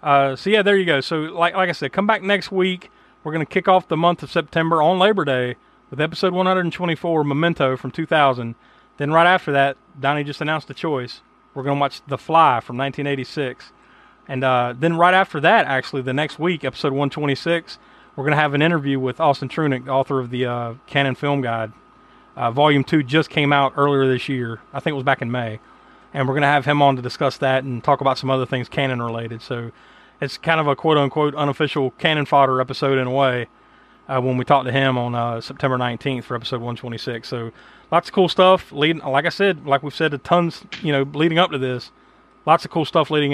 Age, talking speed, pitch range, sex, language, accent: 30-49, 230 wpm, 130-160 Hz, male, English, American